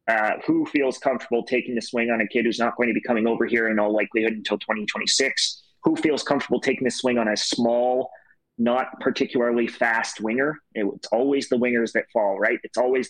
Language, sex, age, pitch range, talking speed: English, male, 30-49, 115-135 Hz, 210 wpm